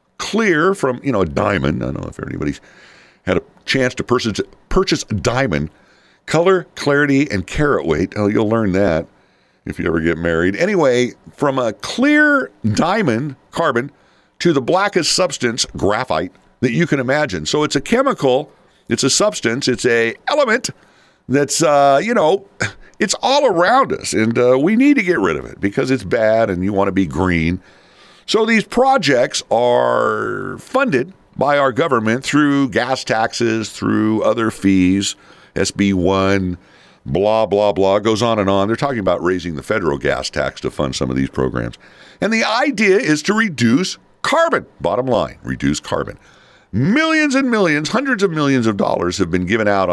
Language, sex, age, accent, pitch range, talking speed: English, male, 50-69, American, 95-145 Hz, 170 wpm